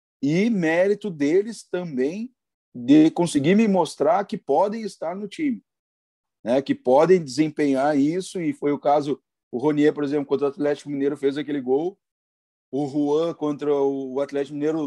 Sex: male